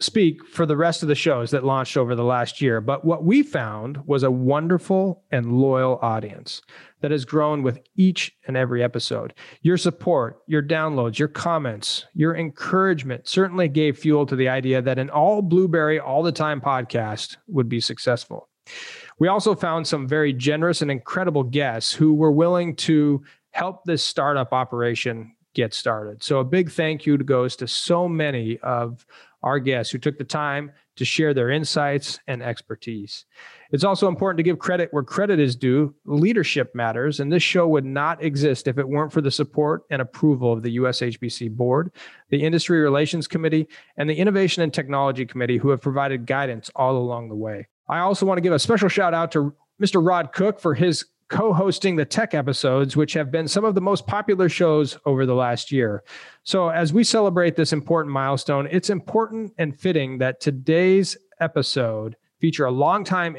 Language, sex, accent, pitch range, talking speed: English, male, American, 130-170 Hz, 185 wpm